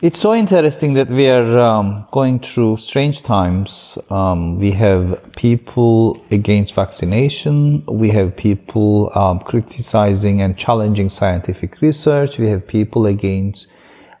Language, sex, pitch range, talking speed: English, male, 100-135 Hz, 125 wpm